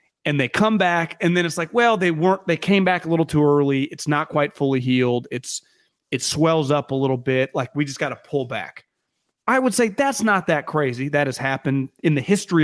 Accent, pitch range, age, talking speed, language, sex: American, 130-180 Hz, 30-49, 235 wpm, English, male